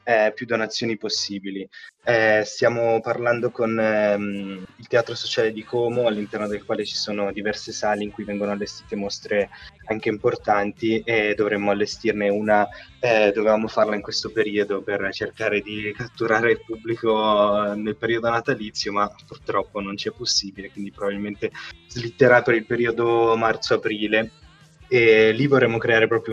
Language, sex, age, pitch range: Italian, male, 20-39, 105-120 Hz